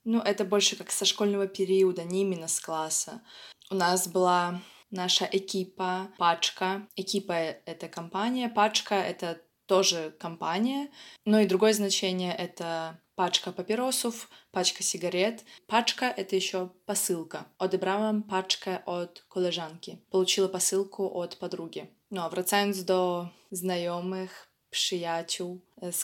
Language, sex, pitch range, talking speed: Polish, female, 175-205 Hz, 130 wpm